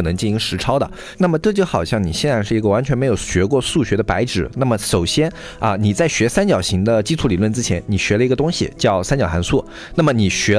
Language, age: Chinese, 20-39